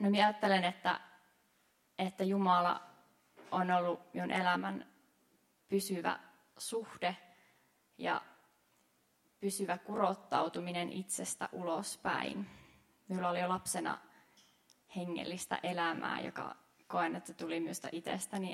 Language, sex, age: Finnish, female, 20-39